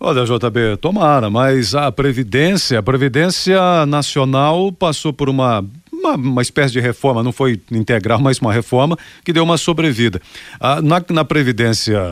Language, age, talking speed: Portuguese, 40-59, 155 wpm